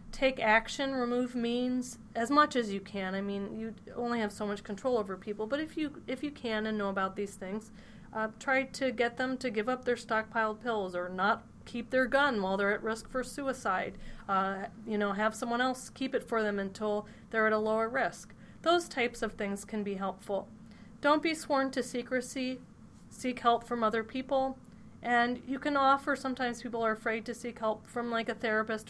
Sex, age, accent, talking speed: female, 30-49, American, 210 wpm